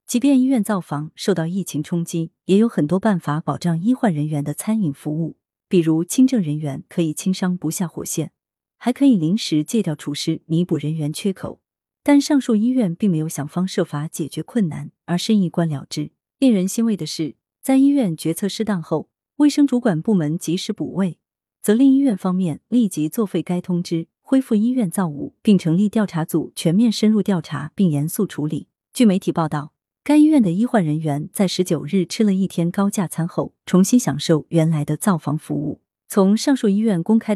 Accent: native